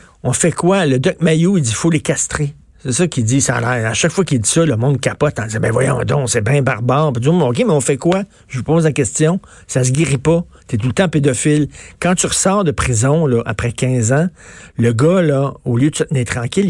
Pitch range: 120-155 Hz